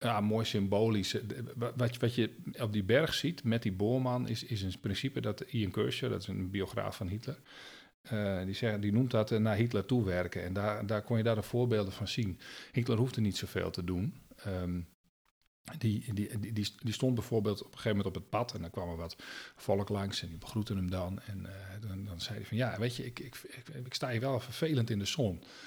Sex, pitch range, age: male, 95-120 Hz, 40-59